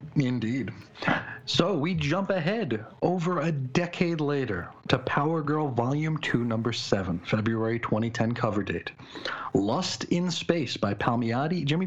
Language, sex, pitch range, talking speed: English, male, 115-150 Hz, 130 wpm